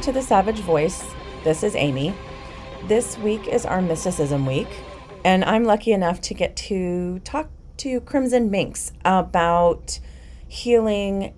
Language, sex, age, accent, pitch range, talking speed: English, female, 30-49, American, 160-205 Hz, 135 wpm